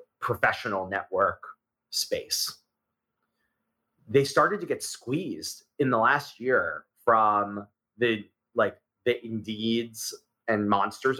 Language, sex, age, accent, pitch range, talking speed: English, male, 30-49, American, 110-150 Hz, 100 wpm